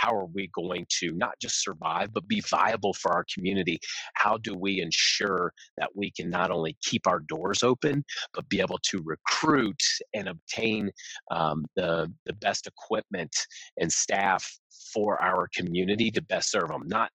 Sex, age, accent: male, 30-49, American